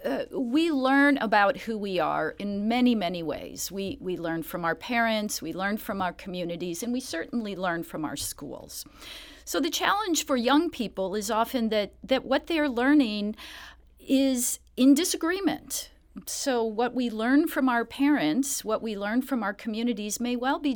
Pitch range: 185-275 Hz